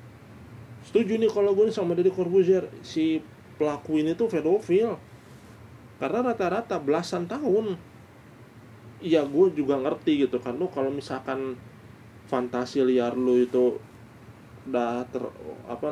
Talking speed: 120 wpm